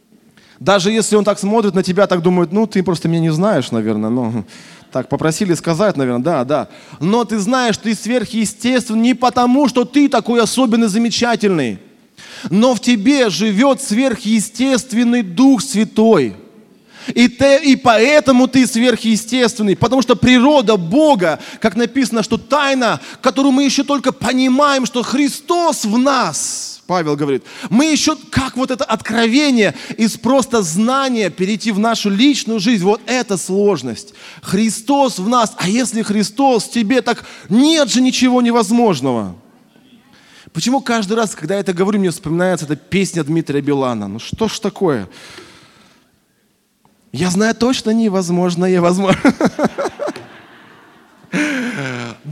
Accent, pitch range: native, 185-245 Hz